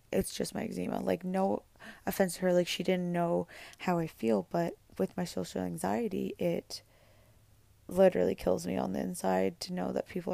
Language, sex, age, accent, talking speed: English, female, 20-39, American, 185 wpm